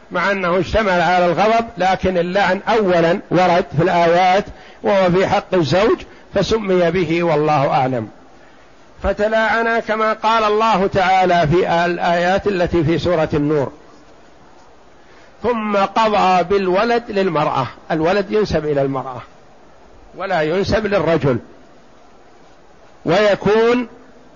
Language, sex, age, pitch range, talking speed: Arabic, male, 60-79, 175-210 Hz, 105 wpm